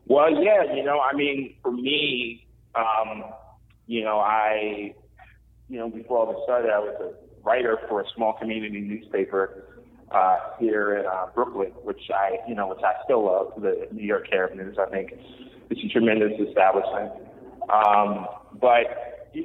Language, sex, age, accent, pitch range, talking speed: English, male, 30-49, American, 105-130 Hz, 165 wpm